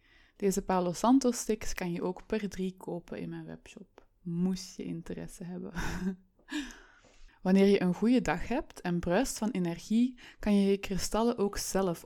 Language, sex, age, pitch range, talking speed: Dutch, female, 20-39, 175-210 Hz, 165 wpm